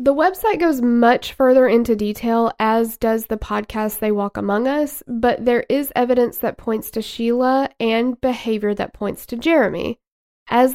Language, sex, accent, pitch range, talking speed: English, female, American, 215-260 Hz, 165 wpm